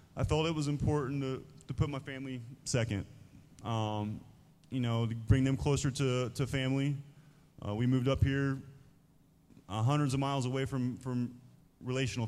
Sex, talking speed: male, 165 wpm